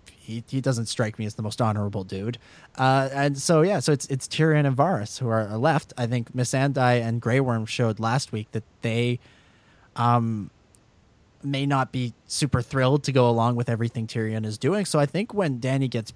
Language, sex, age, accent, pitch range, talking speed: English, male, 30-49, American, 115-160 Hz, 205 wpm